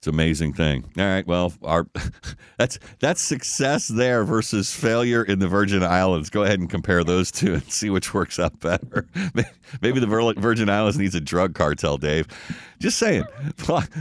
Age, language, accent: 50-69, English, American